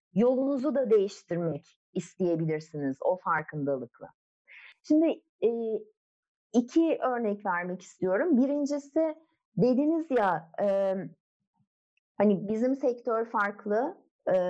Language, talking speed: Turkish, 75 wpm